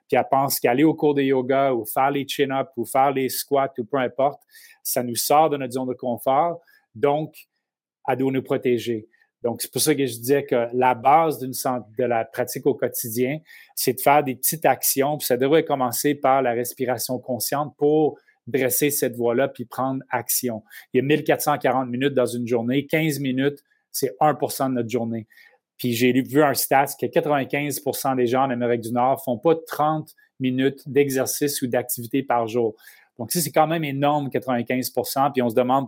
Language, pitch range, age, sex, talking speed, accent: French, 125-145 Hz, 30-49, male, 195 wpm, Canadian